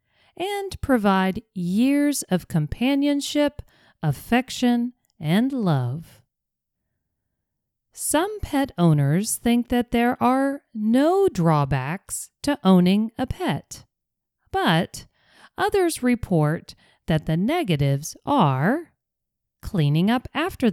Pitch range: 160-260 Hz